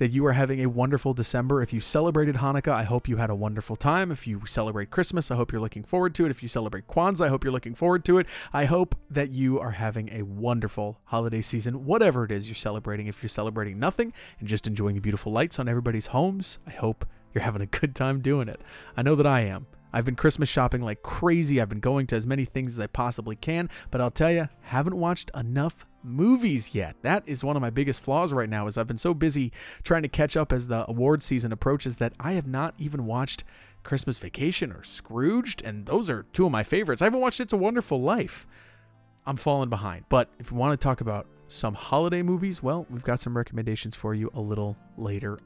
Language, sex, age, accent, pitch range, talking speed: English, male, 30-49, American, 110-150 Hz, 235 wpm